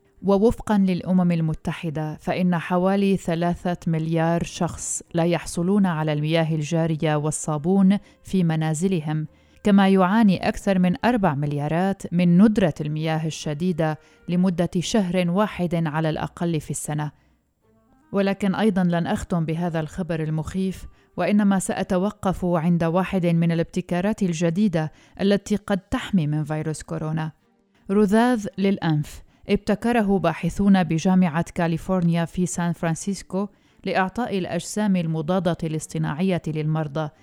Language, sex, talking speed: Arabic, female, 110 wpm